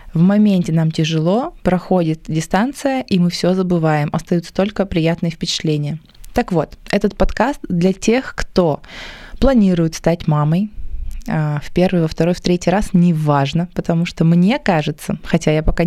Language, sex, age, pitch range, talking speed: Russian, female, 20-39, 165-205 Hz, 155 wpm